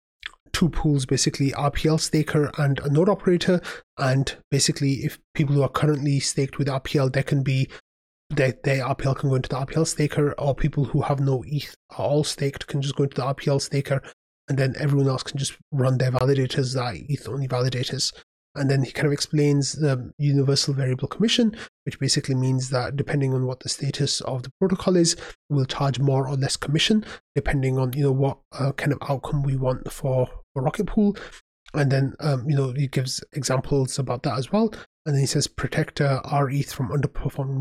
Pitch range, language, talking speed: 130-150 Hz, English, 200 wpm